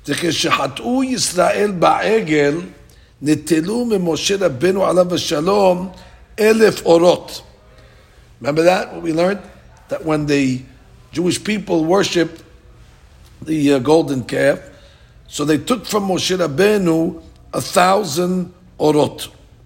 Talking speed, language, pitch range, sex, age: 75 wpm, English, 145-185 Hz, male, 50-69